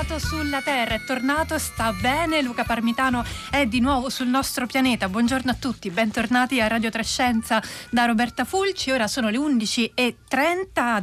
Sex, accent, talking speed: female, native, 150 wpm